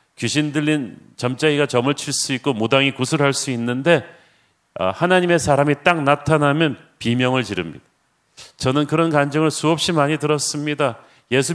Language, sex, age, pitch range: Korean, male, 40-59, 135-165 Hz